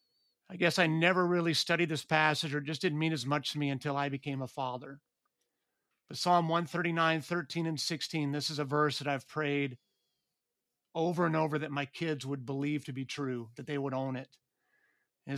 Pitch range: 145-175 Hz